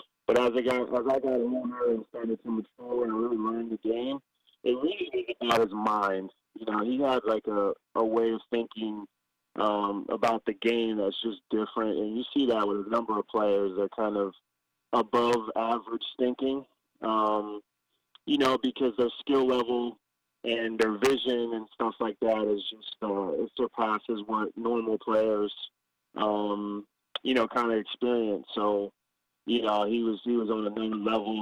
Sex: male